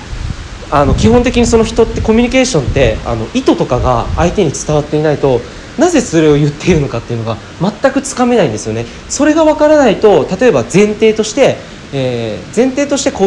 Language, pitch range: Japanese, 145-240 Hz